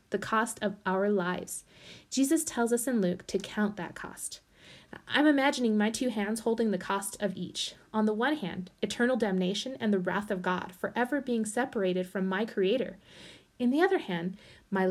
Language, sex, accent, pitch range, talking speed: English, female, American, 195-245 Hz, 185 wpm